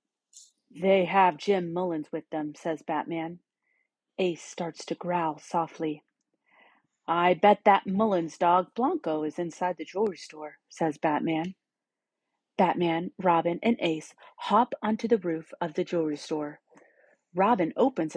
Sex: female